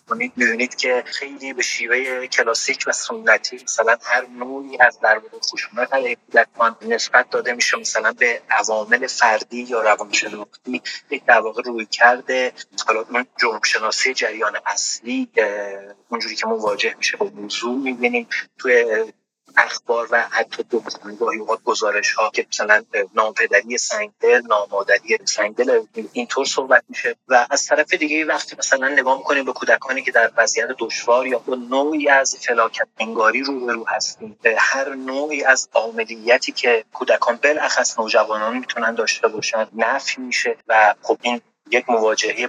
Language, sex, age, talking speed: Persian, male, 30-49, 150 wpm